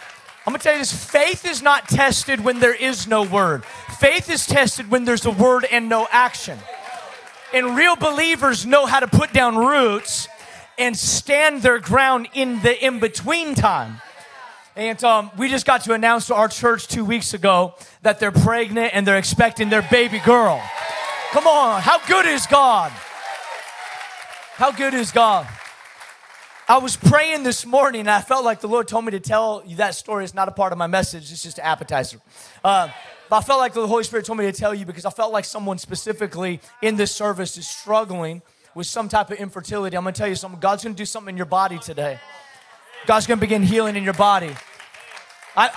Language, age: English, 30-49